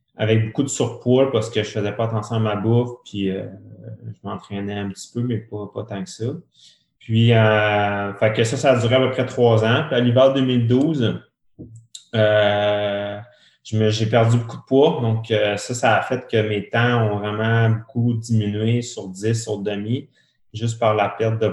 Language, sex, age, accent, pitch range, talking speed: French, male, 30-49, Canadian, 105-120 Hz, 205 wpm